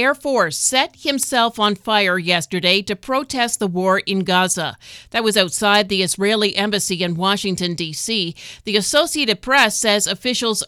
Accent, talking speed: American, 150 wpm